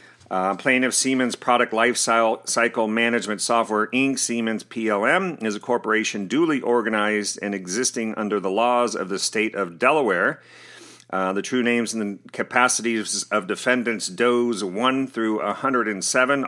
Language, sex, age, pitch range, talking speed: English, male, 40-59, 105-120 Hz, 140 wpm